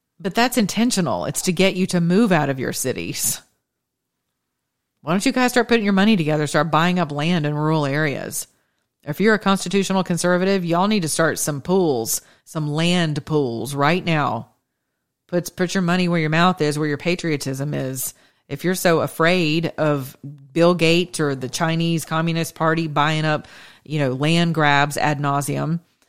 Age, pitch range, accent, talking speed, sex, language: 40-59, 150-190 Hz, American, 175 wpm, female, English